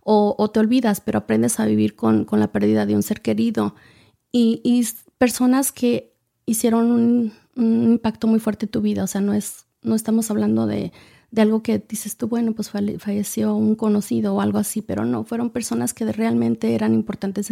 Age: 30-49